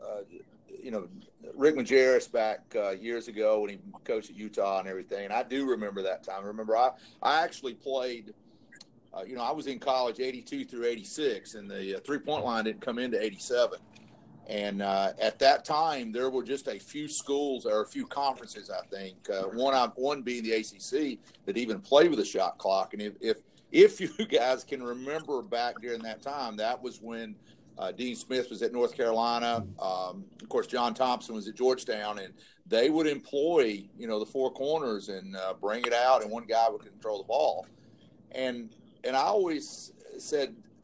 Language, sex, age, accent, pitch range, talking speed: English, male, 40-59, American, 110-145 Hz, 195 wpm